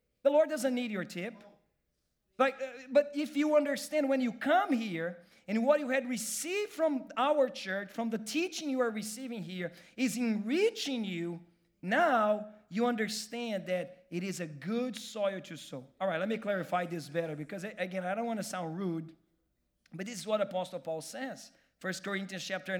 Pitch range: 180-240 Hz